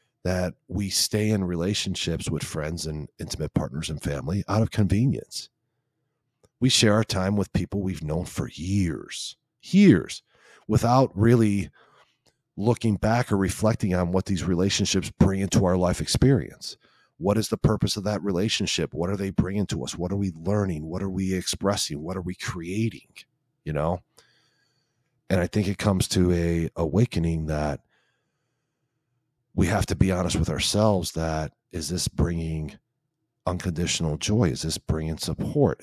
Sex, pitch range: male, 85-110 Hz